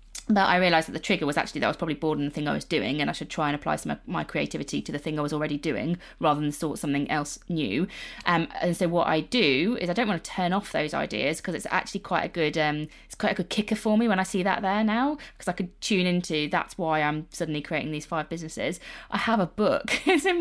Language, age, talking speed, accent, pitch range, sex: English, 20-39, 275 wpm, British, 160-215 Hz, female